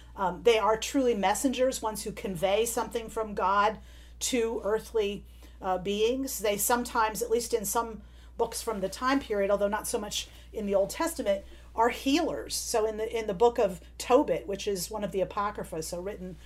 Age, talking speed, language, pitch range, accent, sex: 40-59, 190 wpm, English, 185-245 Hz, American, female